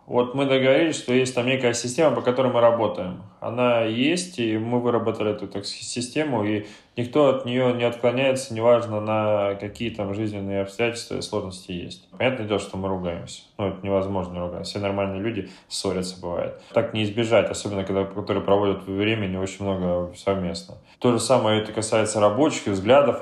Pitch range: 95-115 Hz